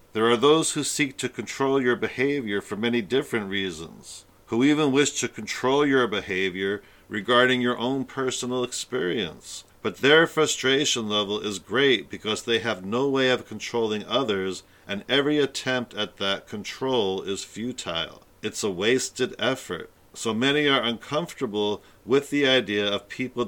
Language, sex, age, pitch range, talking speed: English, male, 50-69, 105-130 Hz, 155 wpm